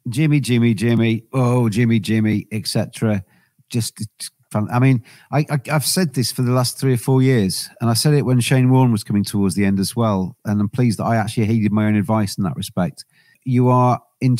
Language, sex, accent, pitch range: English, male, British, 105-125 Hz